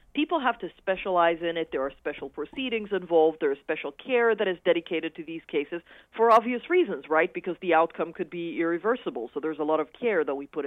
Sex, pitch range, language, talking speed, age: female, 175-270 Hz, English, 225 wpm, 40-59